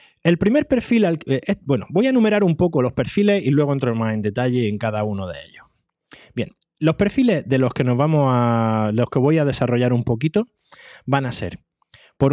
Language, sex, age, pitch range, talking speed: Spanish, male, 20-39, 110-165 Hz, 220 wpm